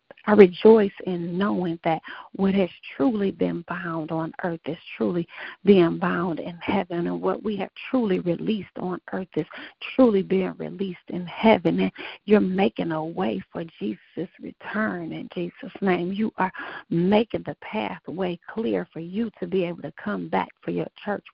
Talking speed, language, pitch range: 170 wpm, English, 165-210 Hz